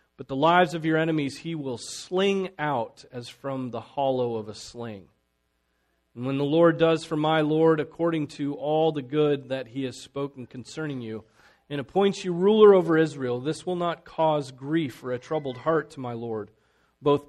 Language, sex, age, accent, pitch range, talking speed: English, male, 40-59, American, 120-155 Hz, 190 wpm